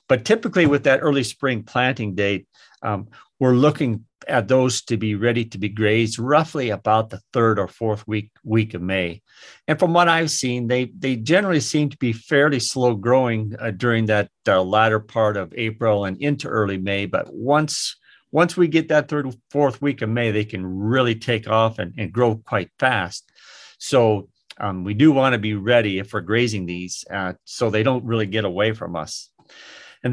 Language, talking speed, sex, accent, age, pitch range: English, 195 wpm, male, American, 50-69, 105-130 Hz